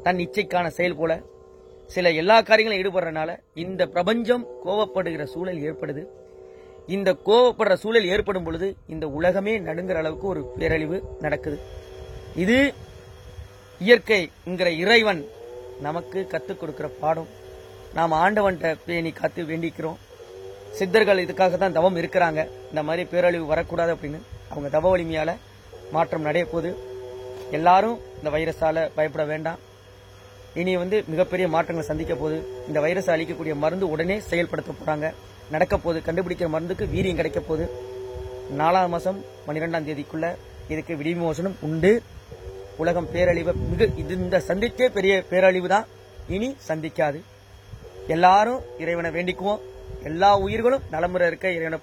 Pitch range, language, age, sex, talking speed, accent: 150-185 Hz, Tamil, 30-49, female, 115 wpm, native